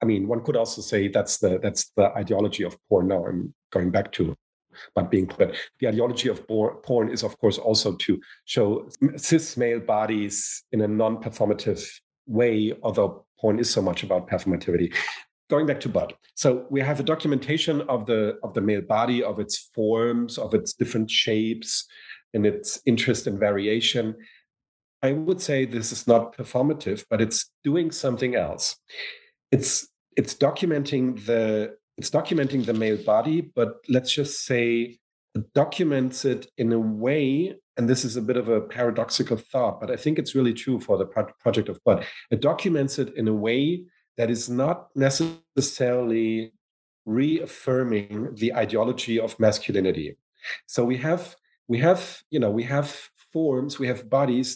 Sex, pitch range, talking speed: male, 110-140 Hz, 170 wpm